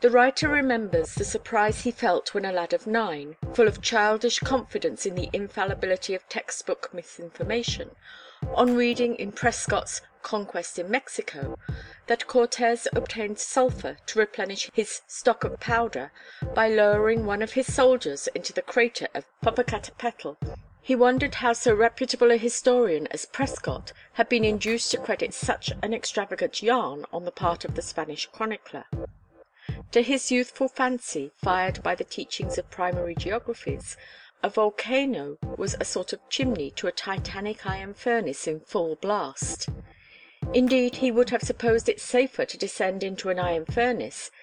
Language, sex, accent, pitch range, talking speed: English, female, British, 195-245 Hz, 155 wpm